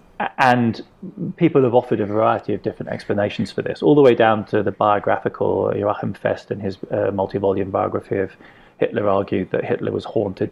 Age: 30-49